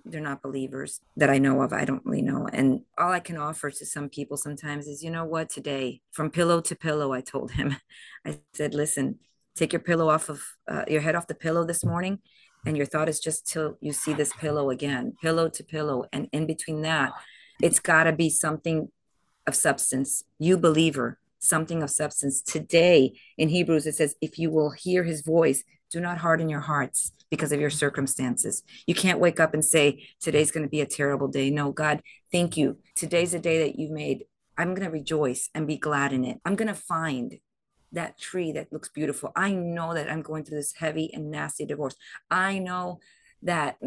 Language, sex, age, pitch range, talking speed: English, female, 40-59, 145-175 Hz, 210 wpm